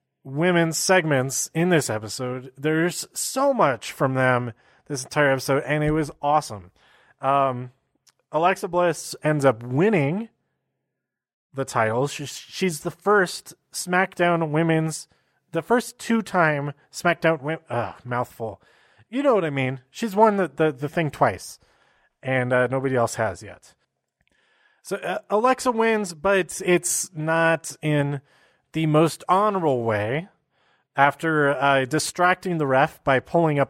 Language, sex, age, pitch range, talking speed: English, male, 30-49, 130-170 Hz, 135 wpm